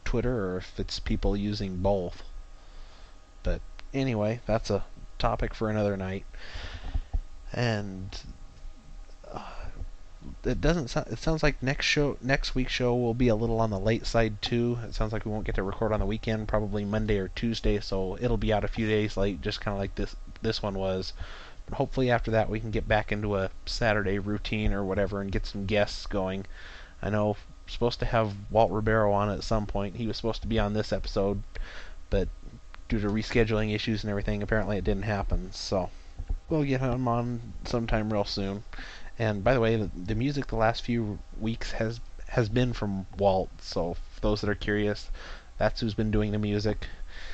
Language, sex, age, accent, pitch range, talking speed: English, male, 30-49, American, 95-115 Hz, 195 wpm